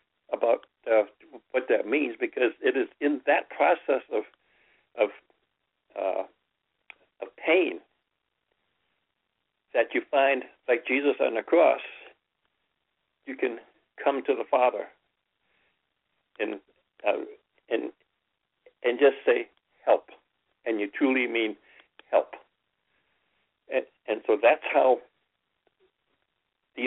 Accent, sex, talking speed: American, male, 105 wpm